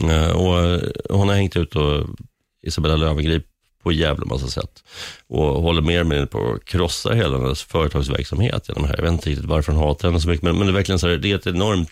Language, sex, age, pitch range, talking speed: Swedish, male, 30-49, 80-105 Hz, 215 wpm